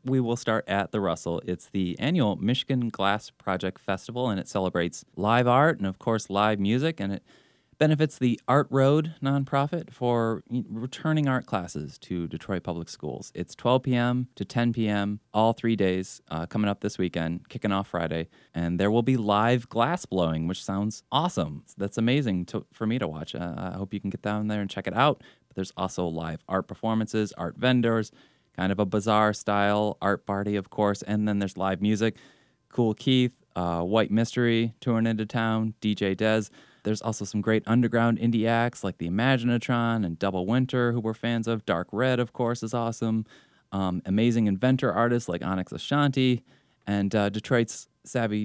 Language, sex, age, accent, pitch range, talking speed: English, male, 20-39, American, 100-120 Hz, 185 wpm